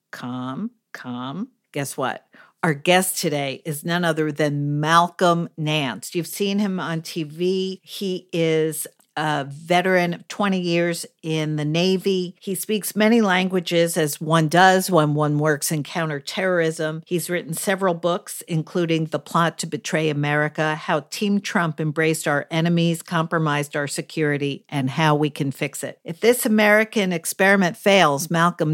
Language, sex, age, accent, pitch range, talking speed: English, female, 50-69, American, 155-195 Hz, 150 wpm